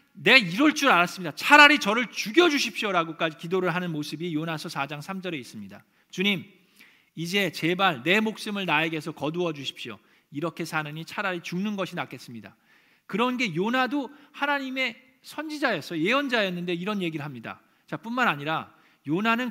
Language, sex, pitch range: Korean, male, 160-220 Hz